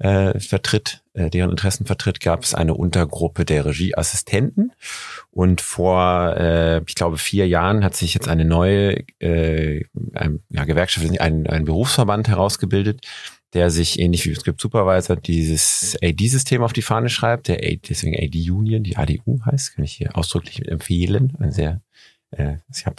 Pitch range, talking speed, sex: 85-100 Hz, 160 wpm, male